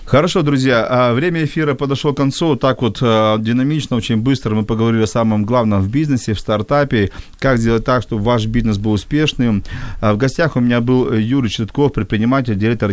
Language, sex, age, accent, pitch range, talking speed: Ukrainian, male, 40-59, native, 110-135 Hz, 175 wpm